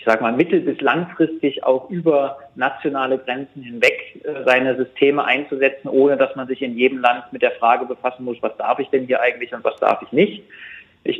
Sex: male